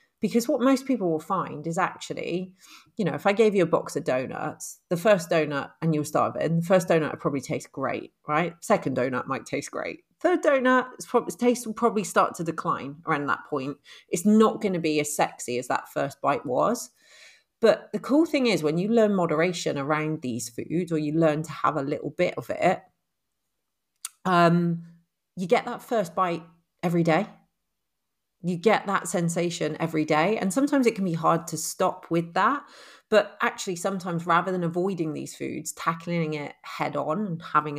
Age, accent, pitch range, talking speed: 40-59, British, 155-205 Hz, 195 wpm